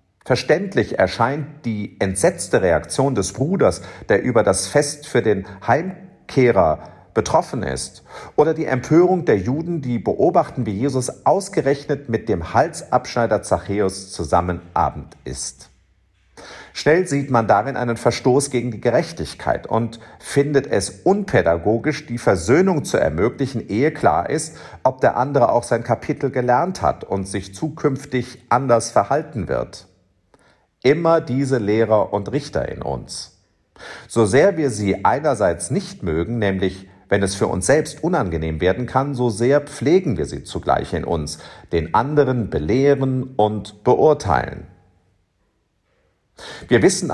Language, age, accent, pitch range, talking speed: German, 50-69, German, 100-140 Hz, 130 wpm